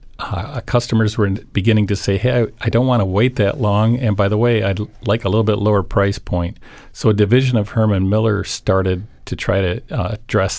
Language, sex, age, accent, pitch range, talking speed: English, male, 50-69, American, 95-115 Hz, 215 wpm